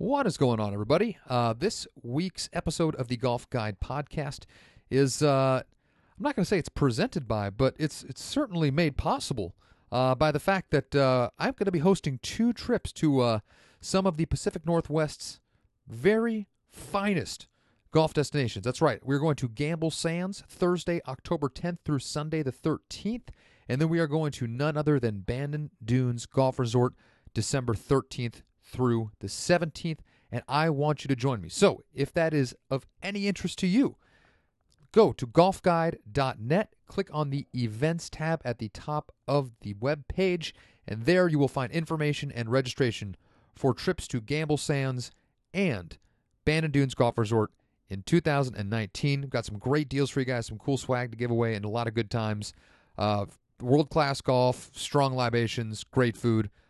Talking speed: 175 wpm